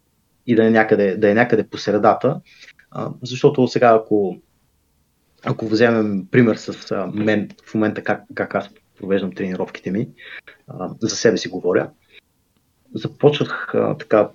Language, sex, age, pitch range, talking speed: Bulgarian, male, 30-49, 95-115 Hz, 125 wpm